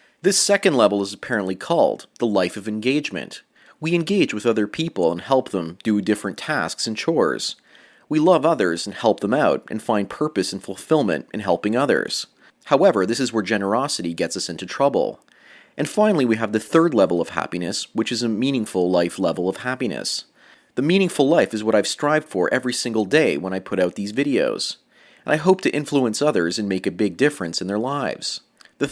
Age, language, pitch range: 30-49, English, 95-140 Hz